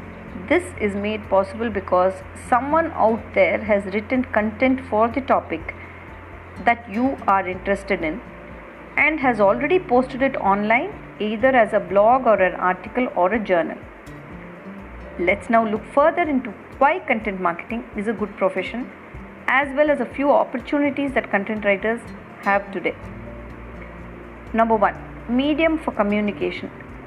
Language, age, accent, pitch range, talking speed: English, 50-69, Indian, 195-260 Hz, 140 wpm